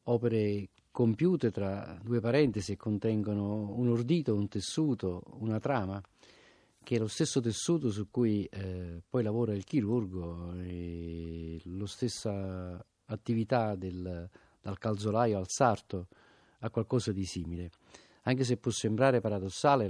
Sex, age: male, 40-59